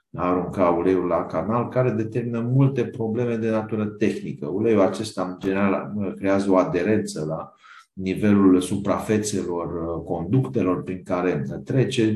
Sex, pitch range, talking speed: male, 90-105 Hz, 130 wpm